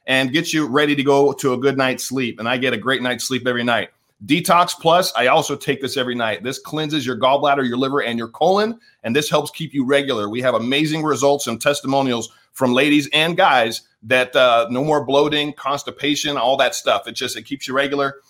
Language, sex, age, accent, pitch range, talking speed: English, male, 30-49, American, 125-155 Hz, 225 wpm